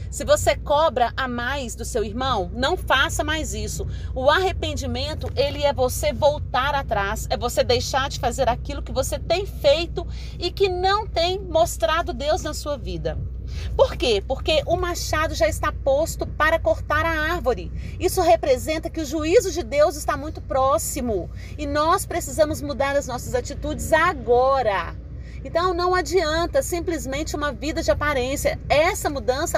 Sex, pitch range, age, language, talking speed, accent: female, 270-350 Hz, 40-59, Portuguese, 160 wpm, Brazilian